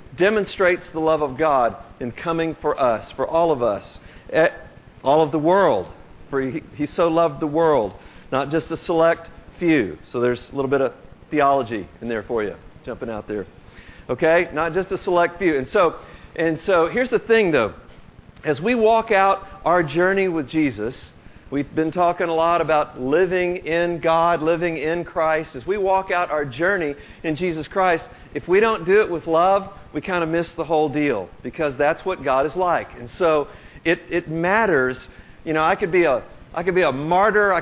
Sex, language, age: male, English, 50-69